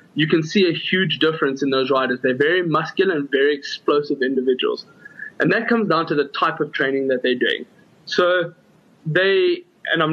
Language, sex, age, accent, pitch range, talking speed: English, male, 20-39, South African, 145-190 Hz, 190 wpm